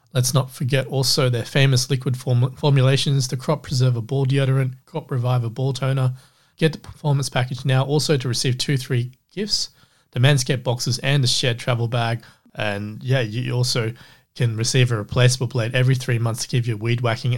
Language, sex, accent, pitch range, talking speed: English, male, Australian, 115-130 Hz, 185 wpm